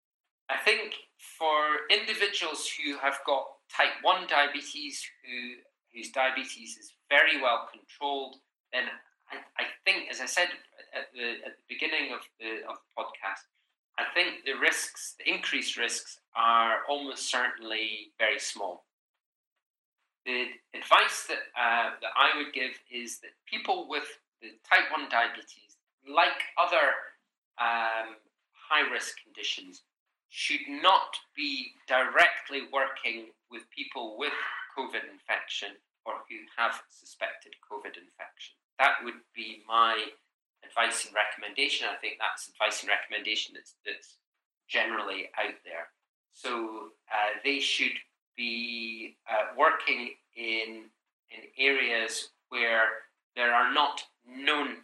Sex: male